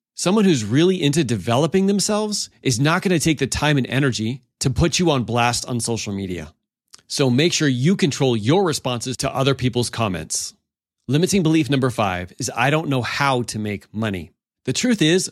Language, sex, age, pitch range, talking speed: English, male, 30-49, 120-165 Hz, 190 wpm